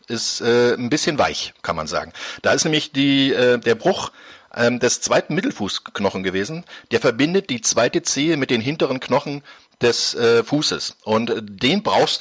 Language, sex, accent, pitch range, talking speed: German, male, German, 110-150 Hz, 175 wpm